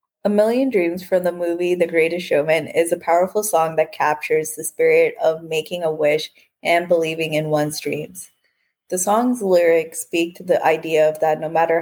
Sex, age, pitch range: female, 20-39, 155-180 Hz